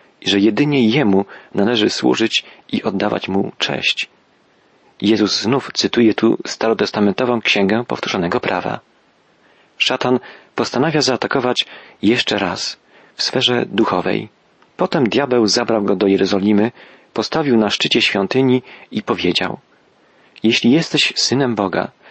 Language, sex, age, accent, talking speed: Polish, male, 40-59, native, 110 wpm